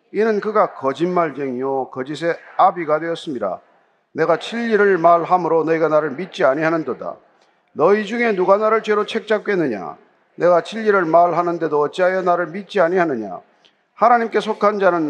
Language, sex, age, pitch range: Korean, male, 40-59, 125-185 Hz